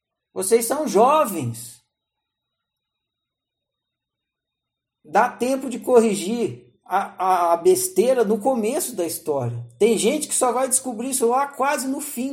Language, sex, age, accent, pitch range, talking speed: Portuguese, male, 50-69, Brazilian, 155-235 Hz, 125 wpm